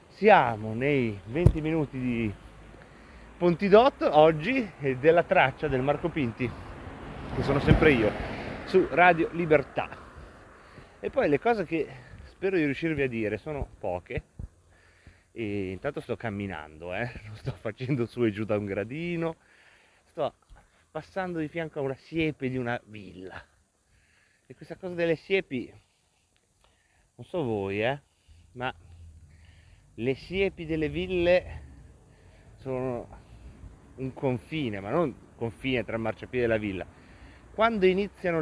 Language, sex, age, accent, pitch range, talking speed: Italian, male, 30-49, native, 95-150 Hz, 130 wpm